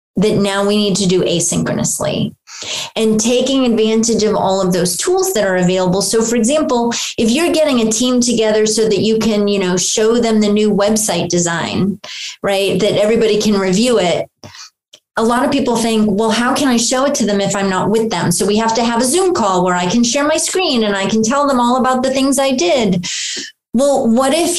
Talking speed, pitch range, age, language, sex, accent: 220 wpm, 210-275 Hz, 30-49, English, female, American